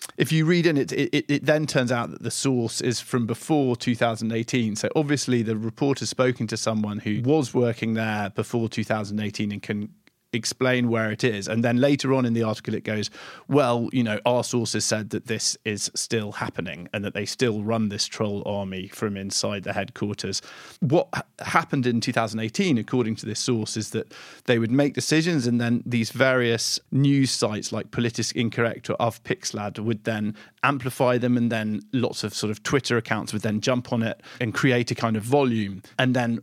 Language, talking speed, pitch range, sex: English, 200 wpm, 110-130 Hz, male